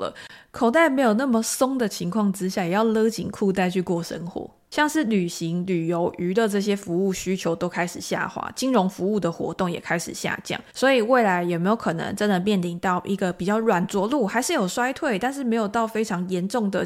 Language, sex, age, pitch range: Chinese, female, 20-39, 180-235 Hz